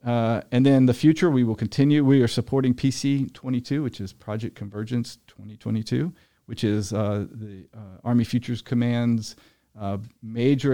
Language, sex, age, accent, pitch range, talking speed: English, male, 40-59, American, 100-120 Hz, 150 wpm